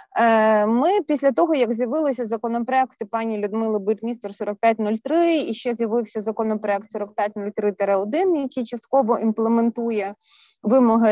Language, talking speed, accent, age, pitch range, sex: Ukrainian, 105 wpm, native, 20-39, 215-260 Hz, female